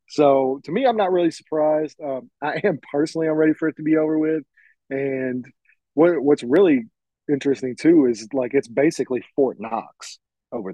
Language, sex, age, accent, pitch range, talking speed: English, male, 30-49, American, 135-155 Hz, 180 wpm